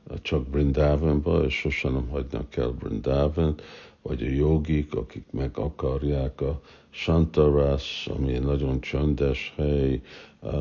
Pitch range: 70-80 Hz